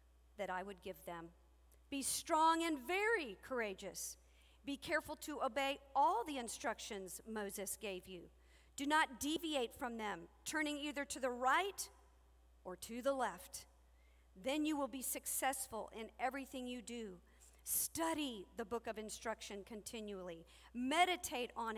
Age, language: 50-69, English